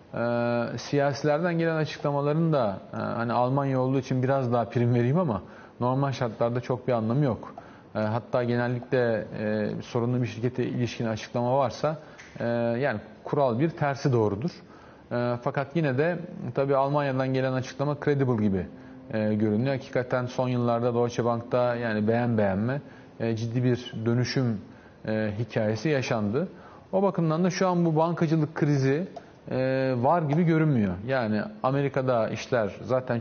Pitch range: 115-140 Hz